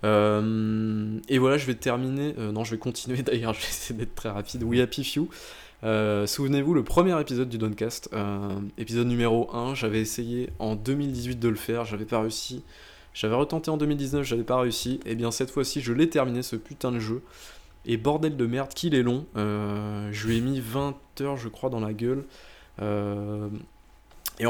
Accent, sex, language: French, male, French